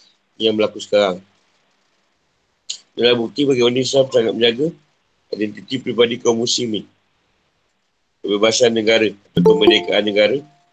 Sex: male